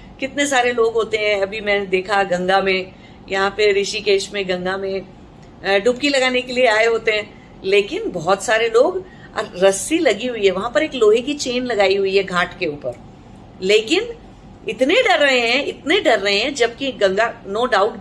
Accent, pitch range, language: Indian, 200-295 Hz, English